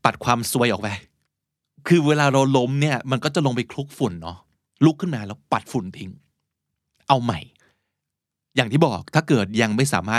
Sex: male